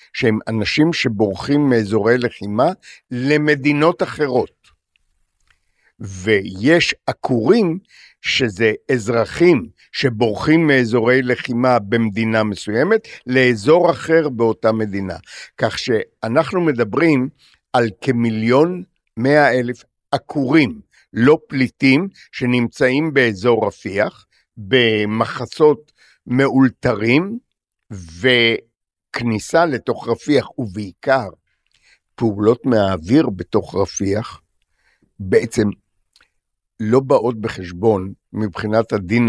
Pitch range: 110-135 Hz